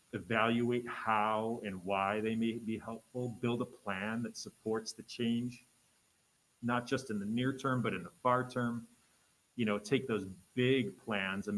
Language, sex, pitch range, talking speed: English, male, 100-120 Hz, 170 wpm